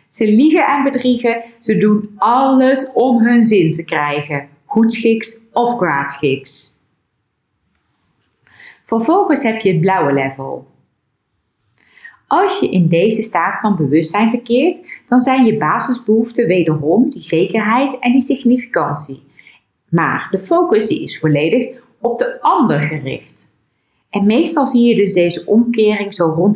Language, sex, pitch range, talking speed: Dutch, female, 170-250 Hz, 130 wpm